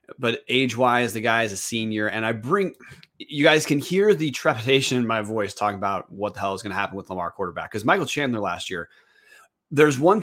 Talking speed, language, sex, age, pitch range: 225 wpm, English, male, 30-49, 100-130 Hz